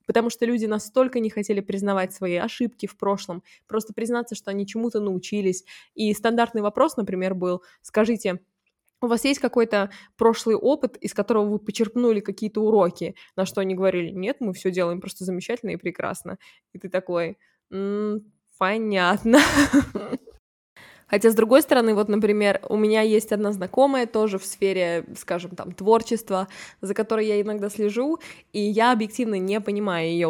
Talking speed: 160 wpm